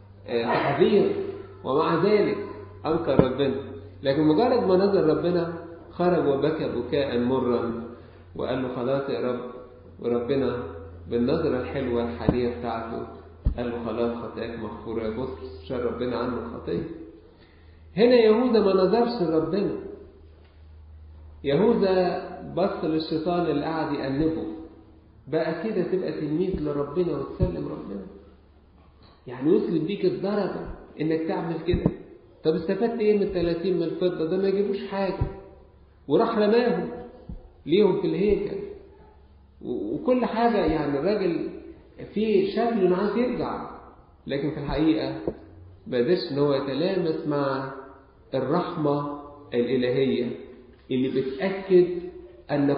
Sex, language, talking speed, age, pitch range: male, Arabic, 110 wpm, 50-69, 120-185 Hz